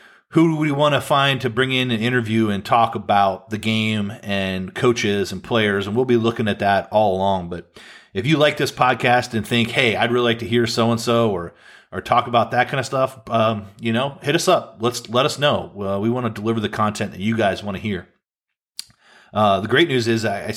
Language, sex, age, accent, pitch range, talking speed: English, male, 30-49, American, 100-120 Hz, 240 wpm